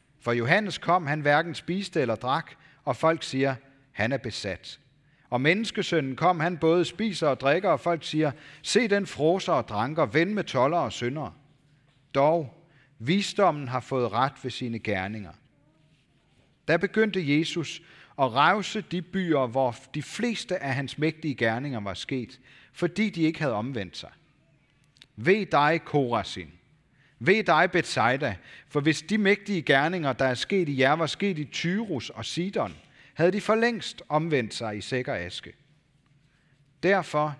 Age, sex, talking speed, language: 40-59, male, 155 wpm, Danish